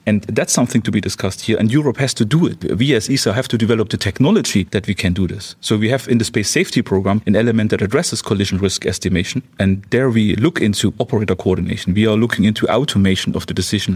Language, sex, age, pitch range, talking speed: English, male, 40-59, 105-125 Hz, 240 wpm